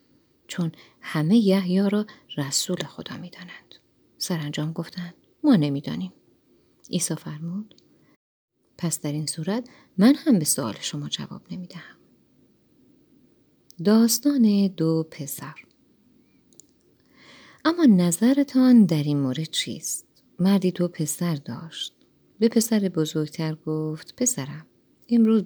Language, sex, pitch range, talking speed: Persian, female, 155-205 Hz, 105 wpm